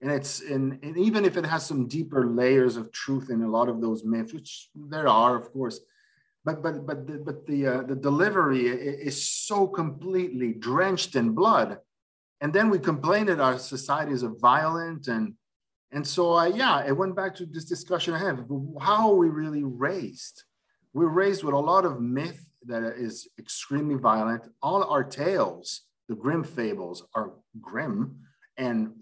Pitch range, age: 120-155 Hz, 50-69